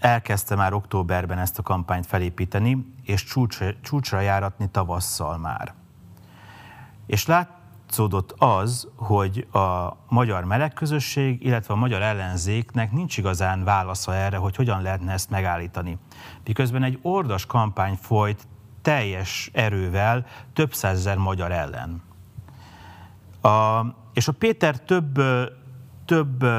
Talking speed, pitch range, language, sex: 110 wpm, 95-125 Hz, Hungarian, male